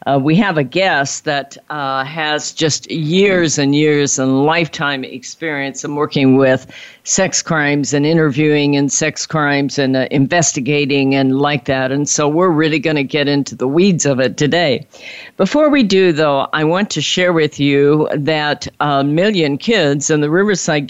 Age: 50-69